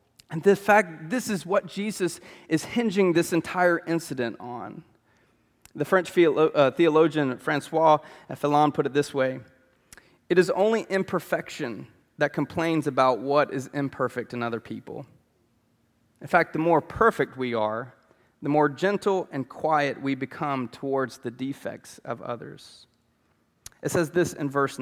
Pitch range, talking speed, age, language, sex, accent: 125-180 Hz, 145 wpm, 30-49, English, male, American